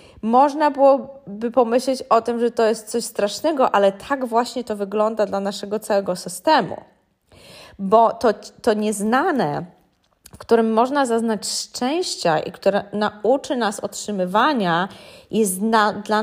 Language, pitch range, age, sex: Polish, 205-255 Hz, 20-39, female